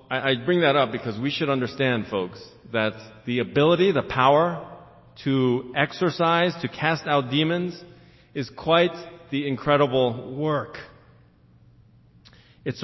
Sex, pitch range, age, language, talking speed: male, 115-155 Hz, 40-59, English, 120 wpm